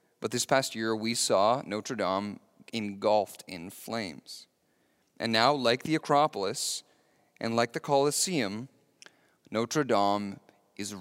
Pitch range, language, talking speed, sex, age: 110-140 Hz, English, 125 wpm, male, 30-49